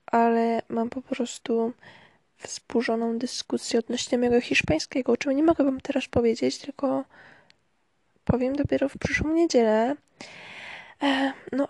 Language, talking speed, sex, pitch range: Polish, 120 wpm, female, 235-285 Hz